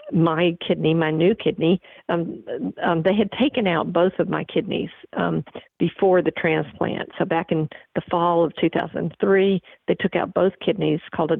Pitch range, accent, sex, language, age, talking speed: 160-185 Hz, American, female, English, 50-69, 175 wpm